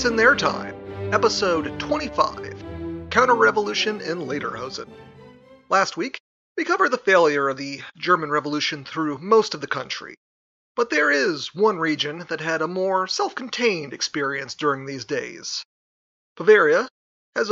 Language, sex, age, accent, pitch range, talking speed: English, male, 30-49, American, 140-190 Hz, 140 wpm